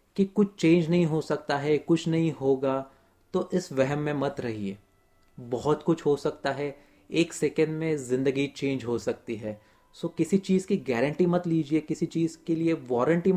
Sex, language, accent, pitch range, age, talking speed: male, Hindi, native, 130-165 Hz, 30-49, 185 wpm